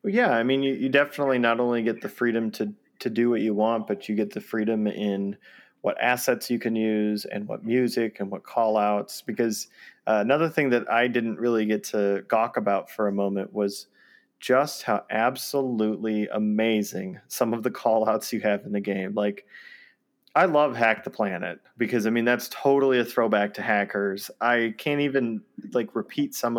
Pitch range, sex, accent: 105-125 Hz, male, American